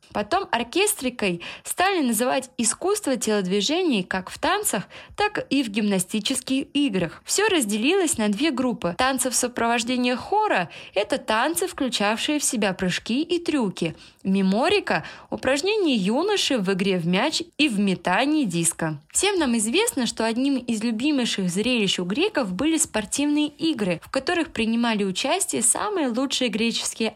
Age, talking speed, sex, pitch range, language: 20-39, 135 wpm, female, 200-300 Hz, Russian